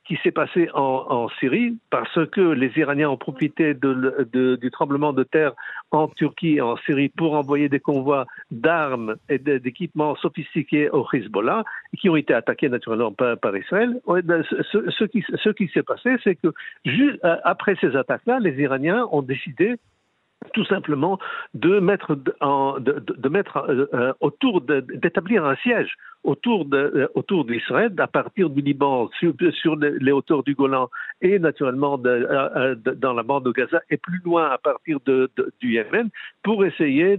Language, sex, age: French, male, 60-79